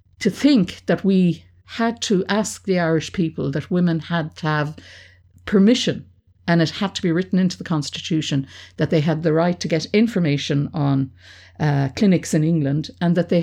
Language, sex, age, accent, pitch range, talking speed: English, female, 60-79, Irish, 140-185 Hz, 185 wpm